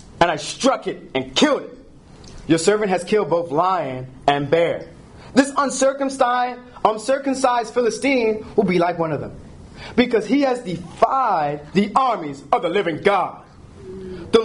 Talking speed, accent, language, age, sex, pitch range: 150 wpm, American, English, 30-49, male, 160-255 Hz